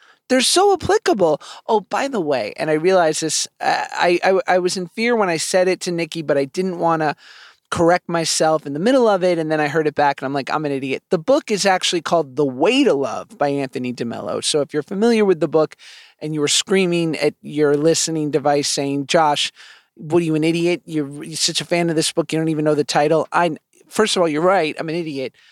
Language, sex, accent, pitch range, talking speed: English, male, American, 150-195 Hz, 245 wpm